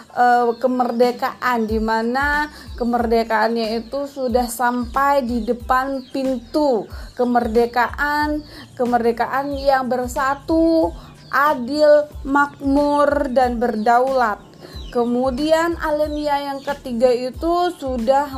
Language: Malay